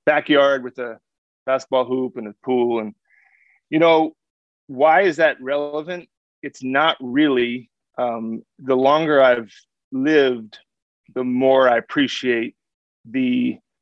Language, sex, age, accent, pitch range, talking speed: English, male, 30-49, American, 125-160 Hz, 120 wpm